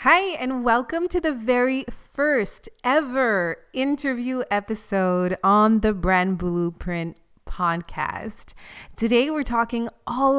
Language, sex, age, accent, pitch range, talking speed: English, female, 30-49, American, 185-235 Hz, 110 wpm